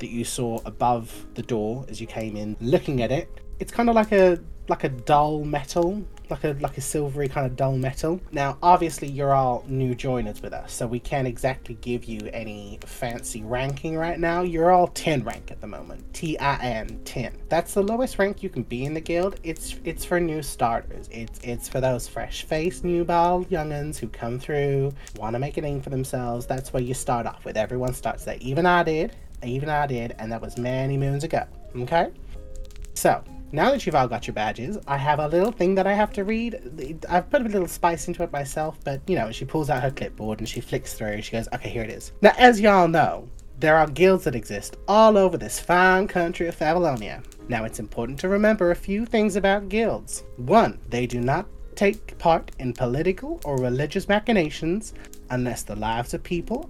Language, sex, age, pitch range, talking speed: English, male, 30-49, 120-175 Hz, 210 wpm